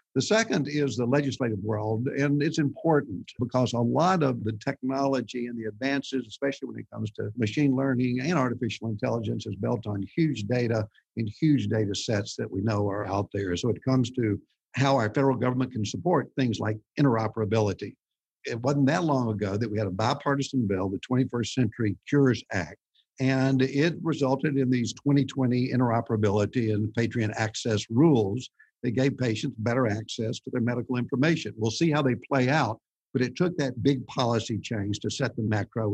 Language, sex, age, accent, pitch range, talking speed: English, male, 50-69, American, 110-135 Hz, 180 wpm